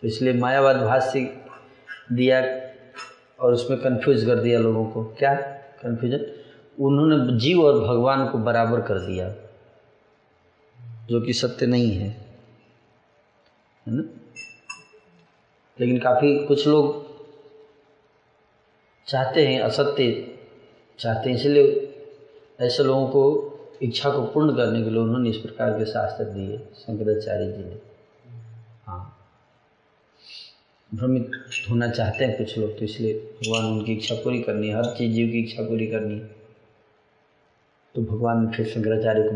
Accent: native